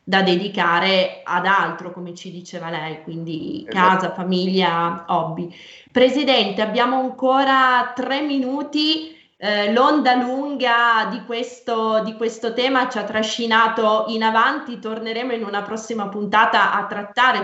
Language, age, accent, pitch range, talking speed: Italian, 20-39, native, 200-235 Hz, 125 wpm